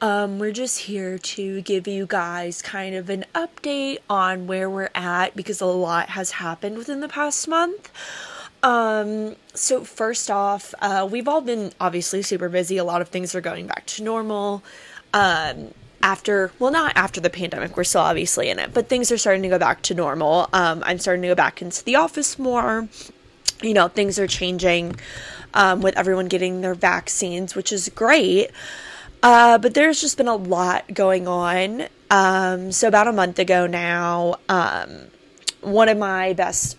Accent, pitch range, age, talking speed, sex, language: American, 180-220 Hz, 20-39, 180 wpm, female, English